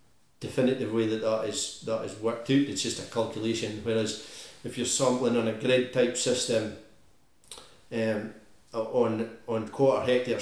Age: 40-59